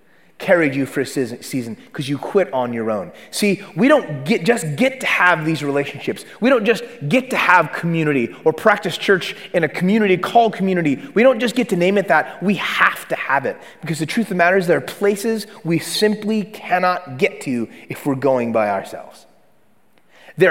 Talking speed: 205 wpm